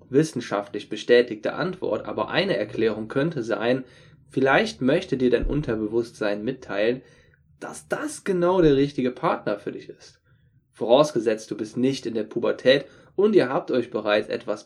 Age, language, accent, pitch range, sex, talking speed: 10-29, German, German, 120-145 Hz, male, 145 wpm